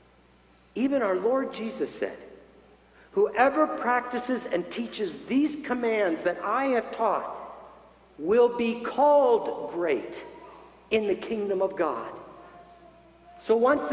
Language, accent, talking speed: English, American, 110 wpm